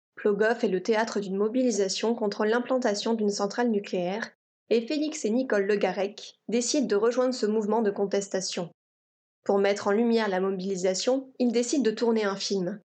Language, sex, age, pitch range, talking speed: French, female, 20-39, 195-235 Hz, 165 wpm